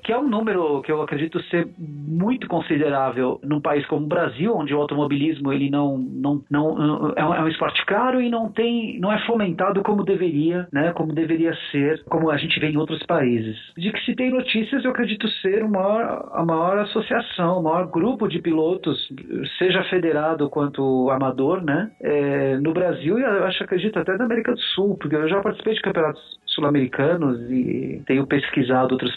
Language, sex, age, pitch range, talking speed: Portuguese, male, 40-59, 145-210 Hz, 185 wpm